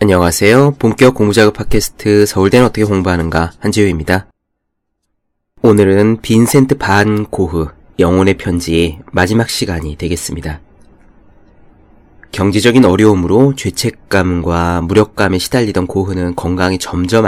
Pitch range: 85-110 Hz